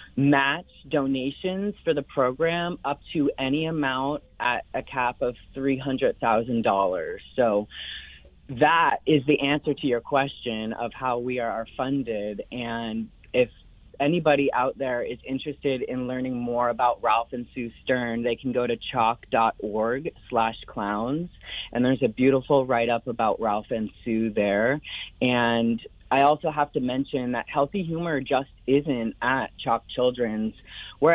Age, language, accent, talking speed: 30-49, English, American, 145 wpm